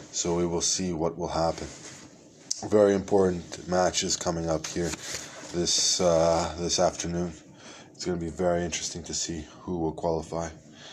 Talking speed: 150 wpm